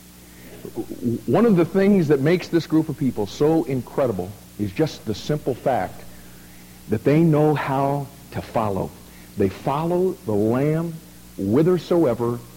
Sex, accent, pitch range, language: male, American, 100-150 Hz, English